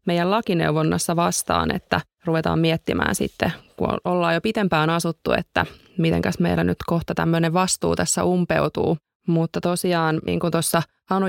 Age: 20-39